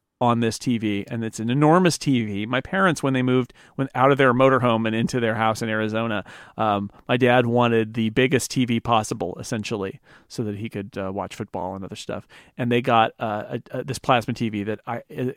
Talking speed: 220 wpm